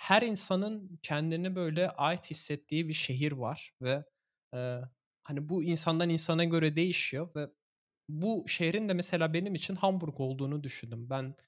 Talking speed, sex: 145 wpm, male